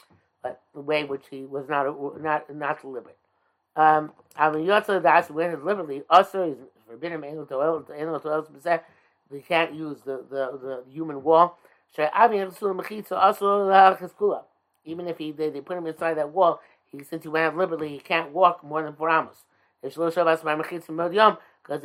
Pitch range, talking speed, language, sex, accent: 145-175 Hz, 110 wpm, English, male, American